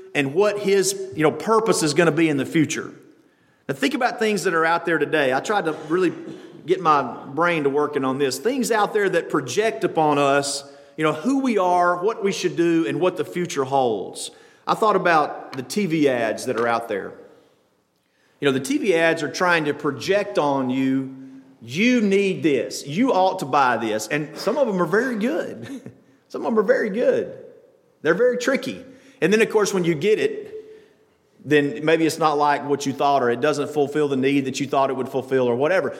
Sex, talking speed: male, 215 wpm